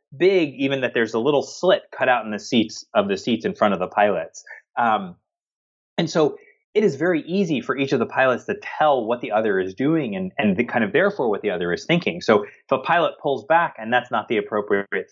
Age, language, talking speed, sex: 30-49, English, 240 wpm, male